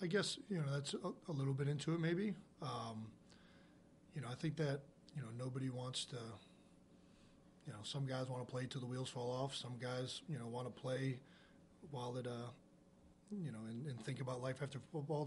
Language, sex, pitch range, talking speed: English, male, 120-140 Hz, 210 wpm